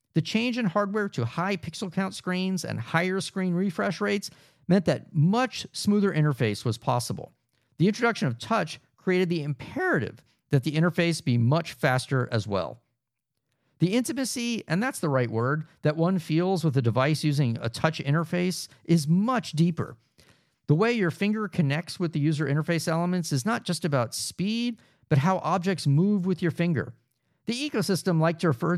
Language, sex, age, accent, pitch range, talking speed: English, male, 50-69, American, 130-185 Hz, 175 wpm